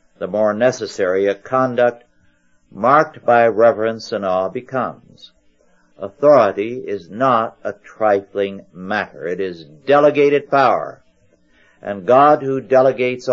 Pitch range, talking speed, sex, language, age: 95-125 Hz, 115 wpm, male, English, 60-79